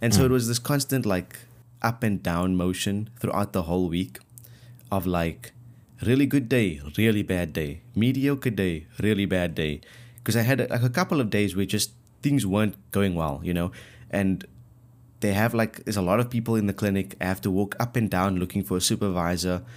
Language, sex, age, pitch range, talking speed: English, male, 20-39, 95-120 Hz, 205 wpm